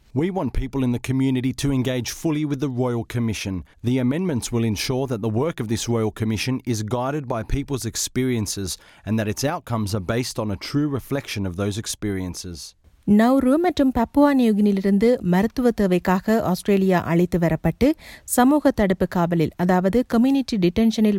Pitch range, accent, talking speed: 160-225 Hz, native, 160 wpm